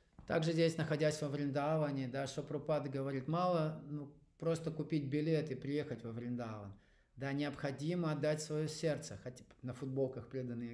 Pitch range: 130-155 Hz